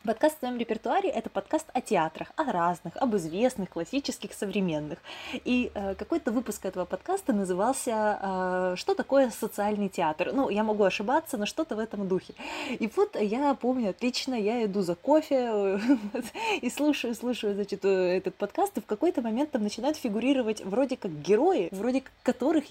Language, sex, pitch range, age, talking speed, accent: Russian, female, 205-290 Hz, 20-39, 160 wpm, native